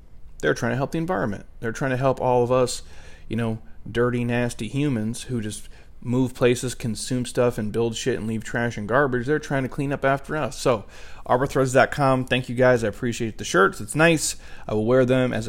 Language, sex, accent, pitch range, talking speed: English, male, American, 110-130 Hz, 215 wpm